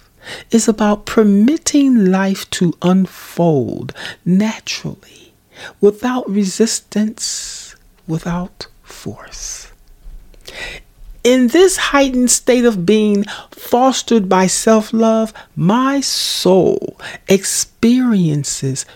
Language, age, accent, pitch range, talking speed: English, 40-59, American, 175-245 Hz, 75 wpm